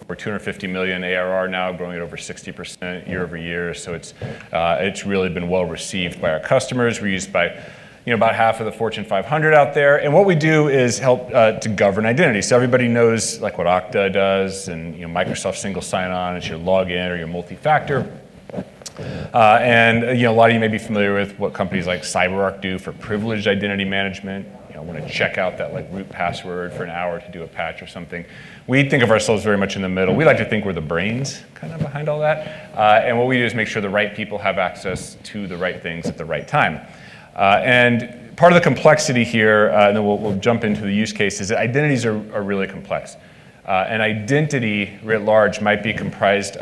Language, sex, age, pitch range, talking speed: English, male, 30-49, 95-115 Hz, 225 wpm